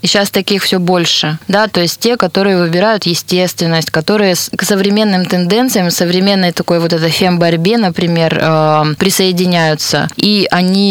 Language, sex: Russian, female